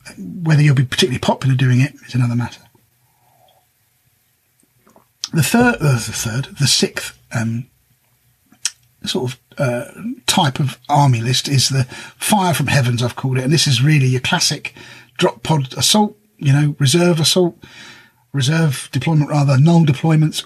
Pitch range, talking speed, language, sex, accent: 125-155 Hz, 150 wpm, English, male, British